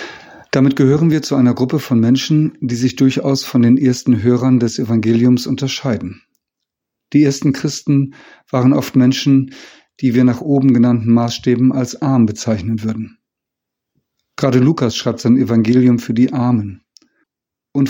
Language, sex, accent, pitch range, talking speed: German, male, German, 120-135 Hz, 145 wpm